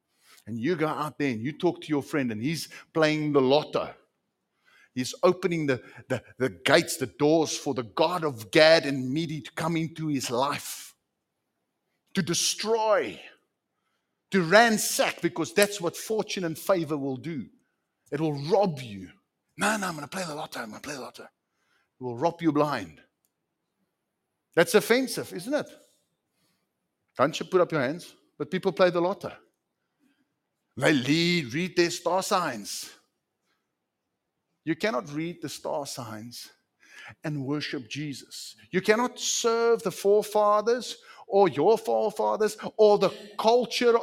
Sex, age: male, 50-69